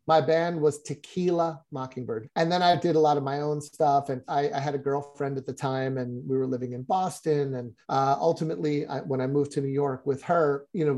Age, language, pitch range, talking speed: 30-49, English, 135-150 Hz, 240 wpm